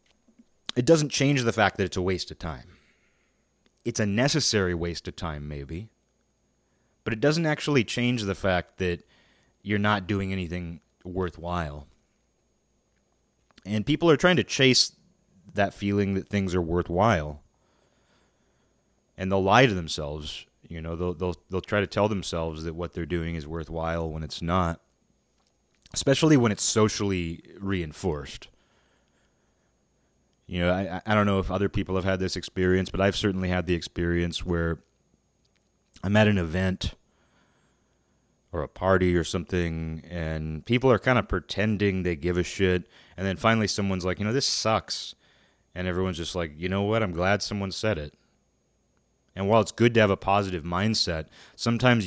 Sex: male